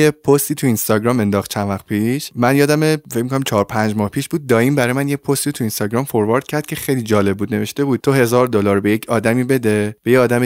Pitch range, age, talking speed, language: 110-145 Hz, 20-39, 225 wpm, Persian